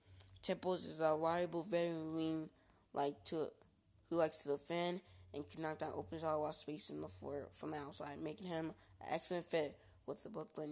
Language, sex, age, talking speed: English, female, 20-39, 180 wpm